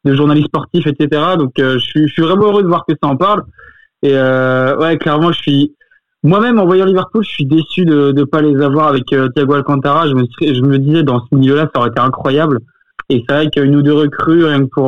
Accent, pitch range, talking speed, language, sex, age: French, 140-170 Hz, 250 wpm, French, male, 20-39